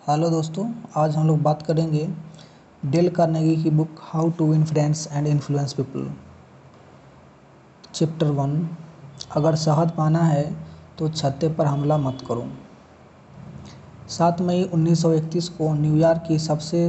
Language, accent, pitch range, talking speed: Hindi, native, 145-165 Hz, 130 wpm